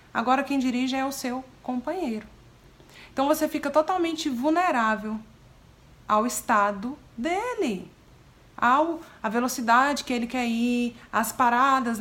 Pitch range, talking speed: 200-255 Hz, 120 wpm